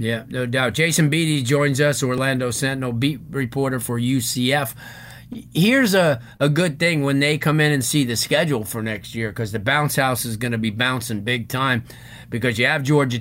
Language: English